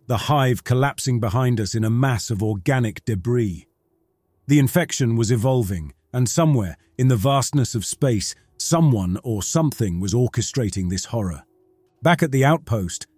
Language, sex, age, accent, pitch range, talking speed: English, male, 40-59, British, 105-145 Hz, 150 wpm